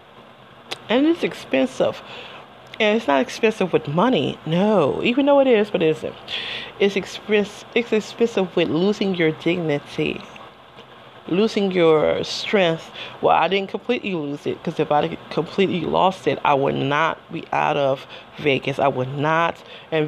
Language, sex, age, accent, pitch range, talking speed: English, female, 30-49, American, 155-205 Hz, 150 wpm